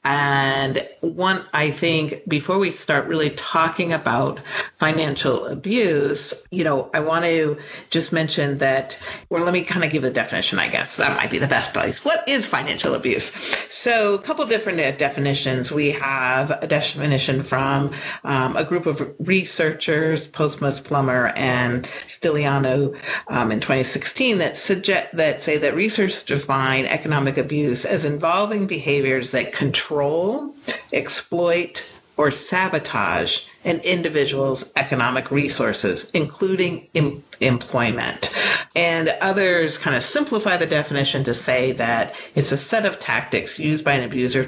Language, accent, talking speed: English, American, 145 wpm